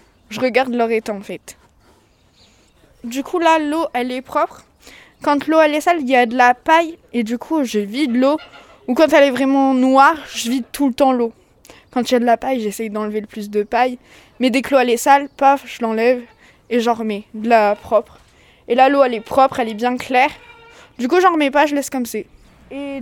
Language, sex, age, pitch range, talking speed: French, female, 20-39, 240-295 Hz, 235 wpm